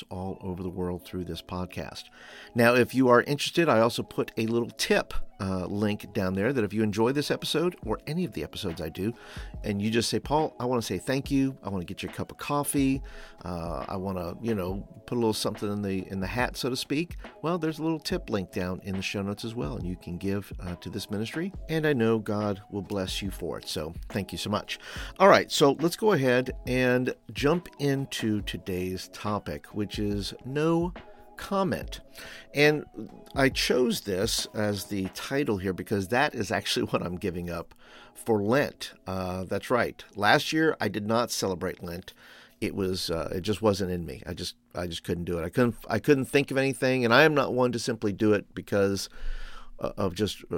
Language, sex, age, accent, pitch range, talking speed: English, male, 50-69, American, 95-130 Hz, 220 wpm